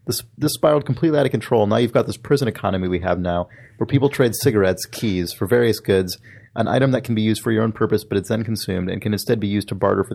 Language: English